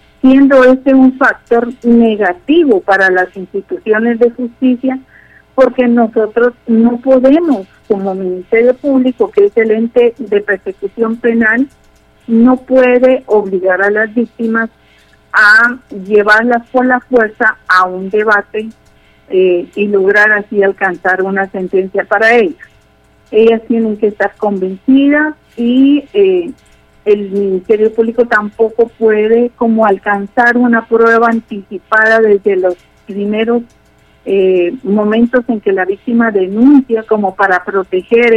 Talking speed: 120 wpm